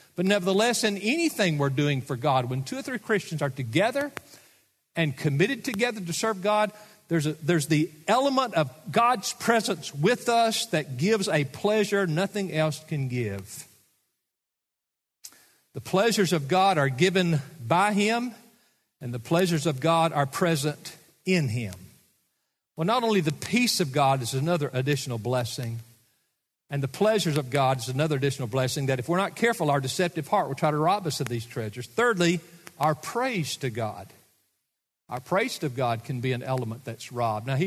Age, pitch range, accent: 50-69, 140-200 Hz, American